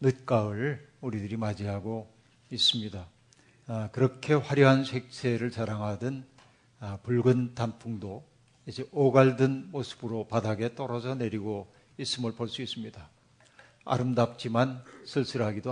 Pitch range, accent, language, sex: 110-130 Hz, native, Korean, male